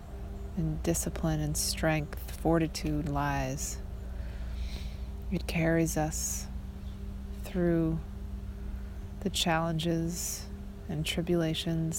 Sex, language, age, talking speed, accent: female, English, 20-39, 70 wpm, American